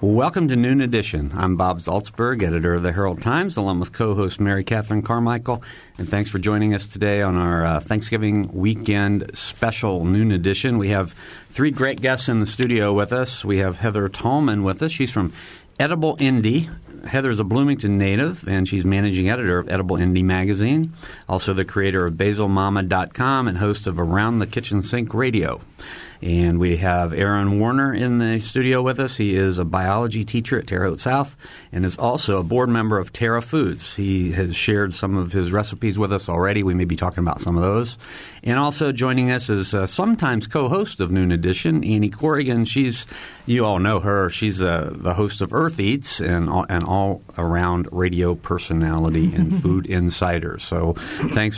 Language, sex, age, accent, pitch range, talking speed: English, male, 50-69, American, 90-115 Hz, 185 wpm